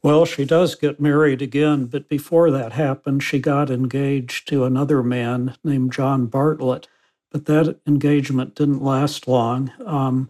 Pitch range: 130-150 Hz